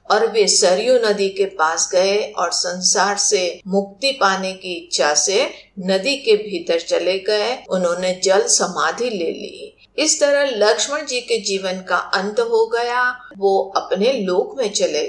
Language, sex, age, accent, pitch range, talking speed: Hindi, female, 50-69, native, 185-295 Hz, 160 wpm